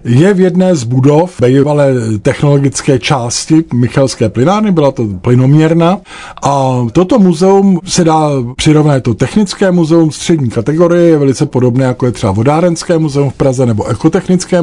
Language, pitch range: Czech, 125-155 Hz